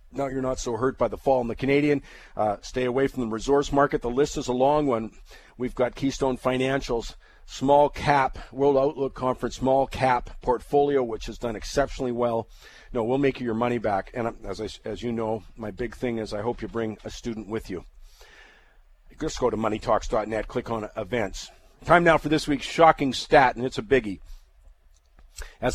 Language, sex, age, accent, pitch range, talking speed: English, male, 50-69, American, 115-140 Hz, 200 wpm